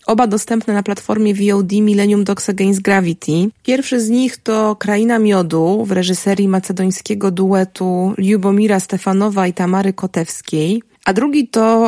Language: Polish